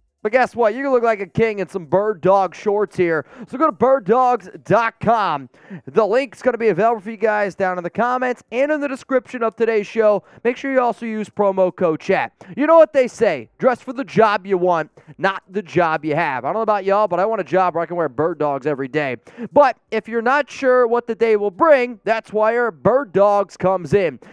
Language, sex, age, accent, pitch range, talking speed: English, male, 20-39, American, 175-235 Hz, 240 wpm